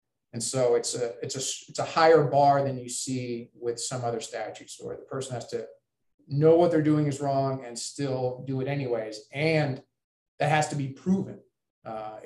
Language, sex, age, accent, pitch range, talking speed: English, male, 30-49, American, 120-150 Hz, 195 wpm